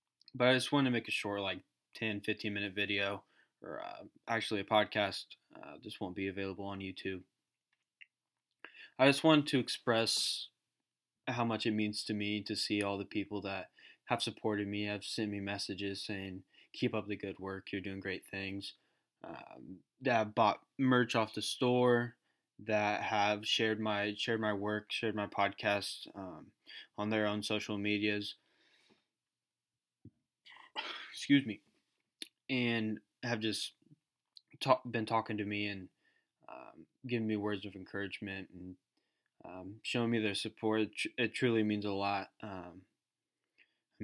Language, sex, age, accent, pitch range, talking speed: English, male, 10-29, American, 100-115 Hz, 150 wpm